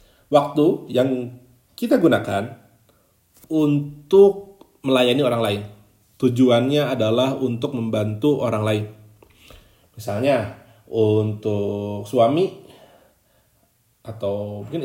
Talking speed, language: 75 wpm, Indonesian